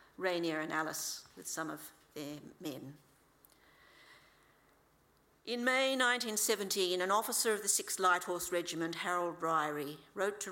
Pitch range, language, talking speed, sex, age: 160-200 Hz, English, 130 wpm, female, 50-69